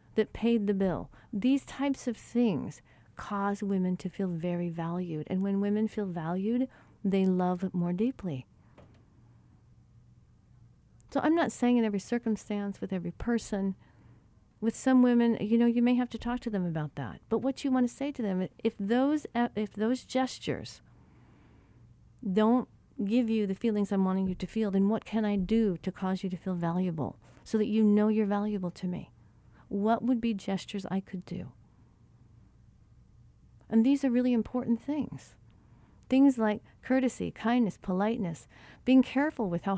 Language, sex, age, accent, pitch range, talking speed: English, female, 50-69, American, 170-230 Hz, 165 wpm